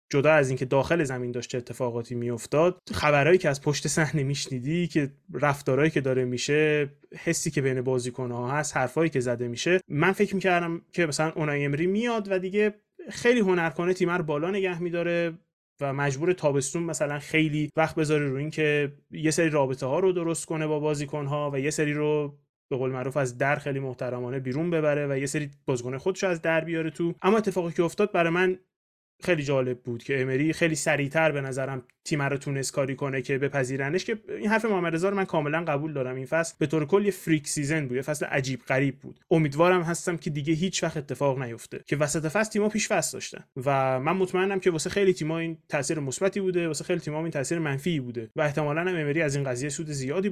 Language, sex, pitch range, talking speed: Persian, male, 140-175 Hz, 200 wpm